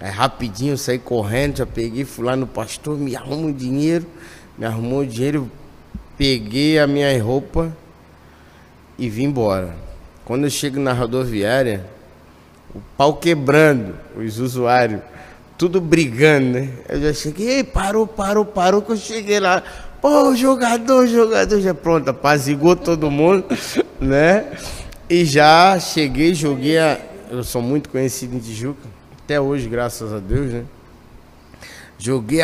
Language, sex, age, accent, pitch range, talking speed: Portuguese, male, 20-39, Brazilian, 120-165 Hz, 140 wpm